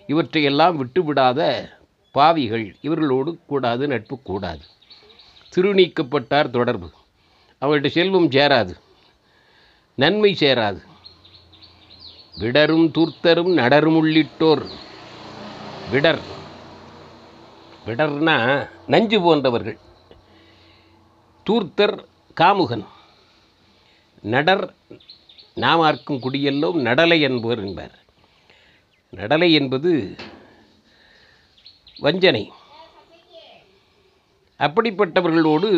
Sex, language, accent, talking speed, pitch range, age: male, Tamil, native, 55 wpm, 105-160 Hz, 60-79